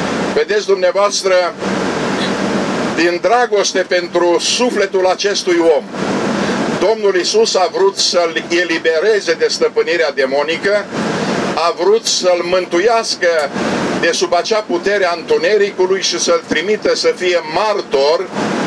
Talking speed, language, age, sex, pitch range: 105 wpm, Romanian, 50-69, male, 175-230 Hz